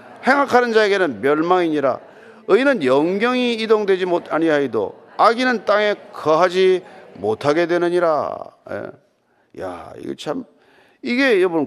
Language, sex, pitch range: Korean, male, 160-245 Hz